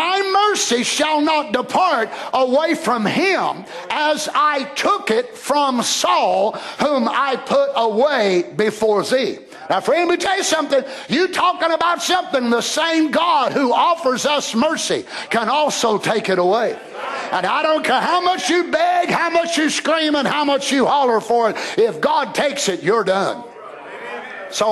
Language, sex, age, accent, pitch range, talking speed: English, male, 50-69, American, 255-340 Hz, 165 wpm